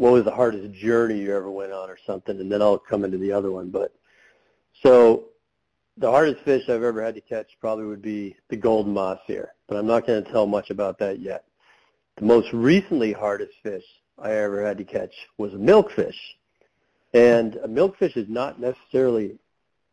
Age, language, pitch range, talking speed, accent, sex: 40-59, English, 105-120 Hz, 195 wpm, American, male